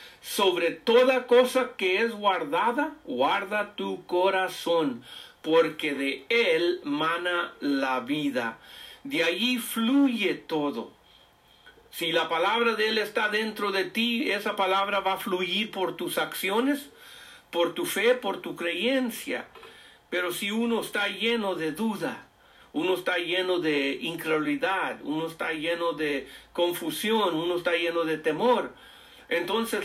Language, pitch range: English, 170-245 Hz